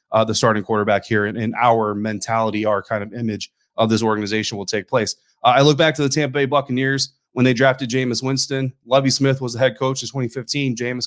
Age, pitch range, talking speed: 30-49, 110-135 Hz, 230 wpm